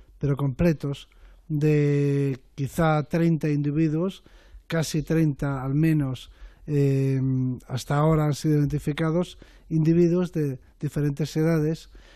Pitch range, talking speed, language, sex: 140-165 Hz, 100 wpm, Spanish, male